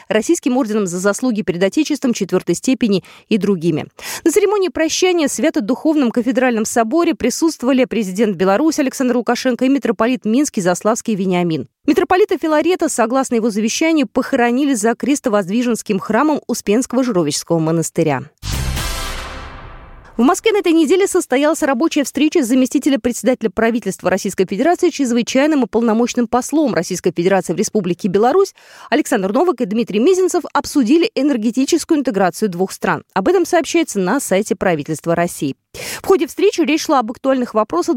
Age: 20-39